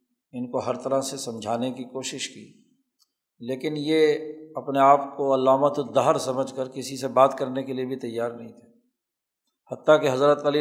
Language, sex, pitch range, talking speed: Urdu, male, 125-145 Hz, 180 wpm